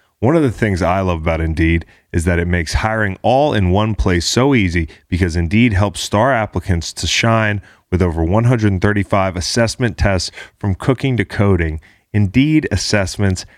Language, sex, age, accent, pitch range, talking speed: English, male, 30-49, American, 85-105 Hz, 165 wpm